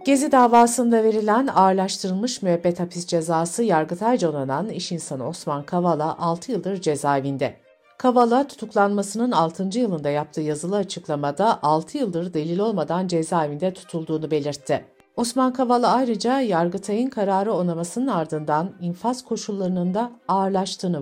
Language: Turkish